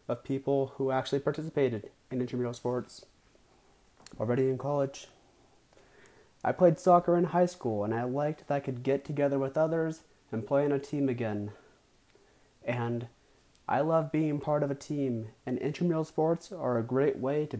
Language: English